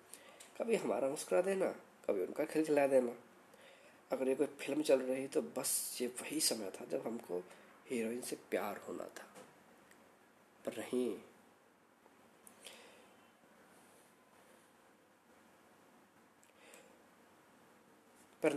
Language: Hindi